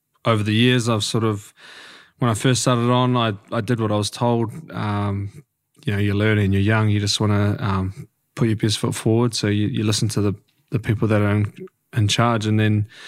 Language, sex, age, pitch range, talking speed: English, male, 20-39, 105-125 Hz, 225 wpm